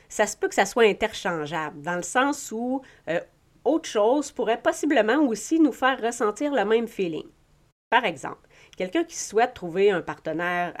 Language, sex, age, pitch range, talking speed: French, female, 40-59, 165-225 Hz, 170 wpm